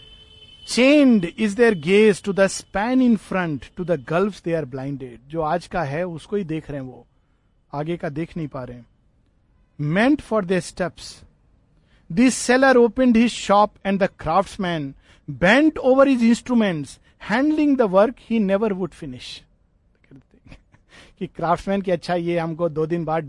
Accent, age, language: native, 50-69, Hindi